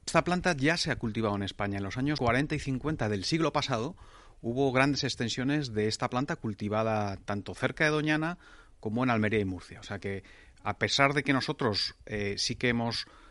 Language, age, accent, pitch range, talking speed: Spanish, 30-49, Spanish, 105-130 Hz, 205 wpm